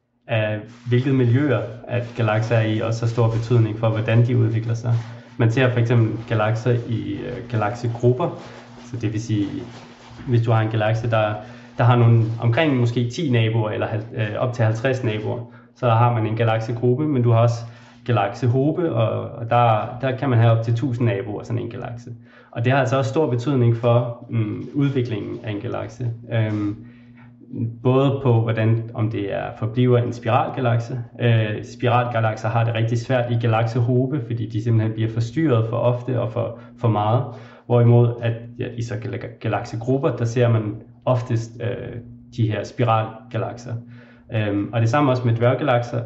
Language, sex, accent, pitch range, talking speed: Danish, male, native, 115-125 Hz, 175 wpm